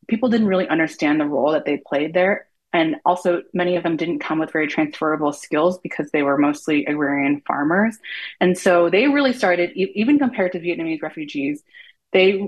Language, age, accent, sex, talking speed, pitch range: English, 20-39, American, female, 185 wpm, 155-185 Hz